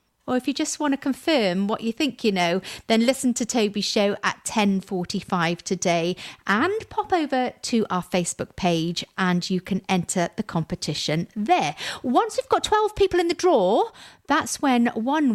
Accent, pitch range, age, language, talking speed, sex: British, 185-300 Hz, 40-59, English, 175 wpm, female